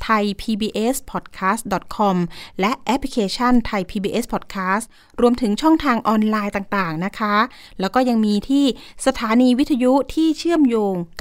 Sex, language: female, Thai